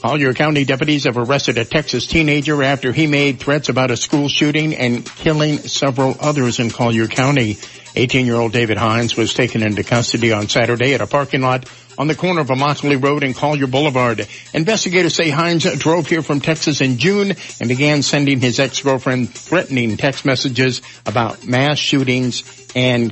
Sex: male